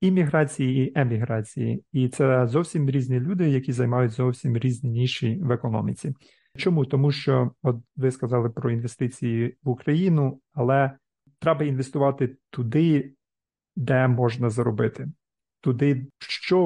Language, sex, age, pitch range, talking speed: Ukrainian, male, 40-59, 125-145 Hz, 125 wpm